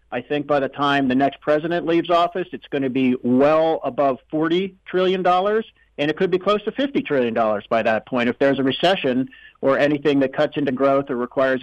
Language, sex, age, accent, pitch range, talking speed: English, male, 50-69, American, 130-170 Hz, 210 wpm